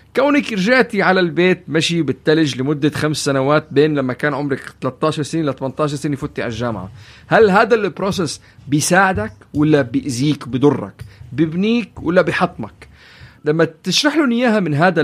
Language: Arabic